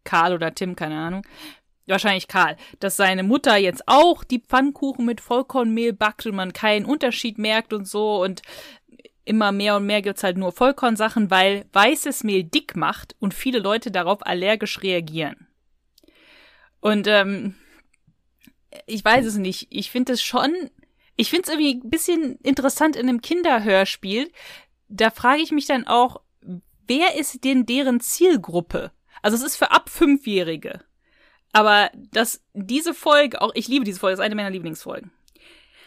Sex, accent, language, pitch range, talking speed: female, German, German, 200-260 Hz, 155 wpm